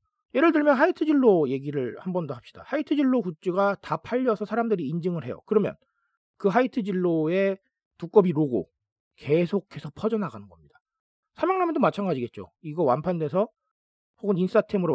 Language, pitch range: Korean, 135-215 Hz